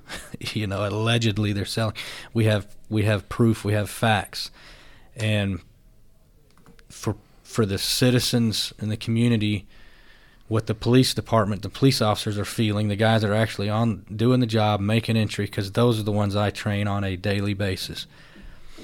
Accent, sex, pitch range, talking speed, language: American, male, 105-115 Hz, 165 wpm, English